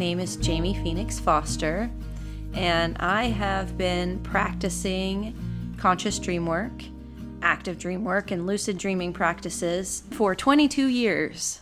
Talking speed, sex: 120 wpm, female